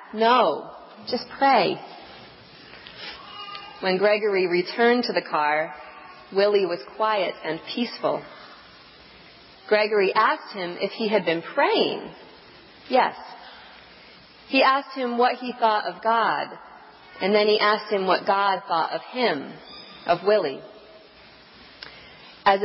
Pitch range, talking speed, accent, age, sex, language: 185-230 Hz, 115 wpm, American, 40-59, female, English